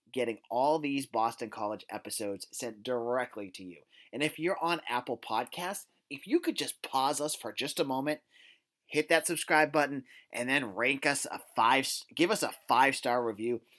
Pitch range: 120-165 Hz